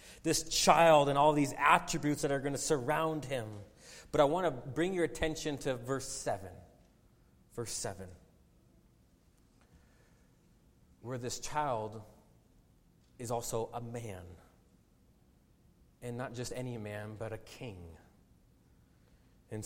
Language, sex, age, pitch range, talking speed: English, male, 30-49, 110-155 Hz, 120 wpm